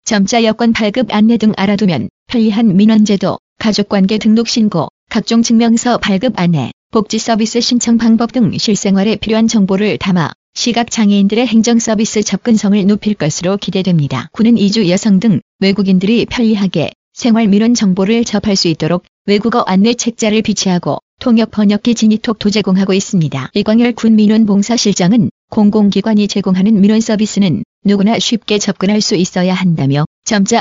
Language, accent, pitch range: Korean, native, 195-225 Hz